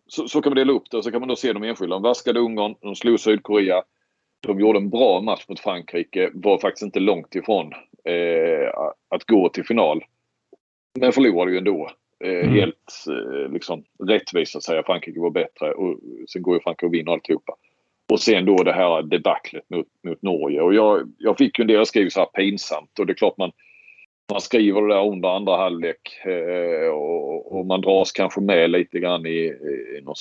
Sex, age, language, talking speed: male, 40-59, Swedish, 205 wpm